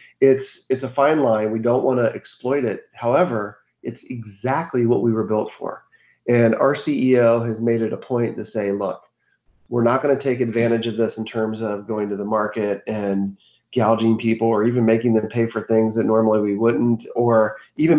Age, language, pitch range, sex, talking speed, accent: 30-49, English, 110-130 Hz, male, 200 wpm, American